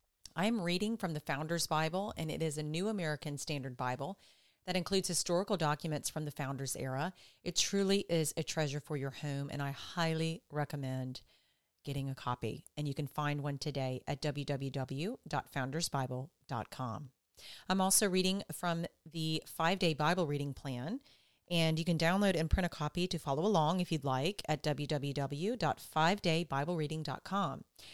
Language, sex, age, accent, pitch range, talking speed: English, female, 40-59, American, 140-175 Hz, 155 wpm